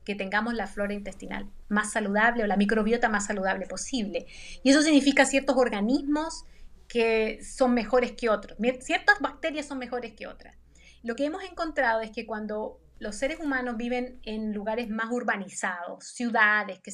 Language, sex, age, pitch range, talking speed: Spanish, female, 30-49, 215-265 Hz, 165 wpm